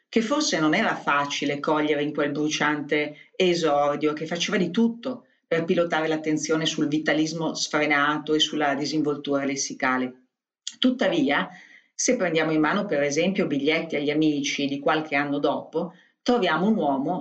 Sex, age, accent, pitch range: female, 40-59, native, 145-185 Hz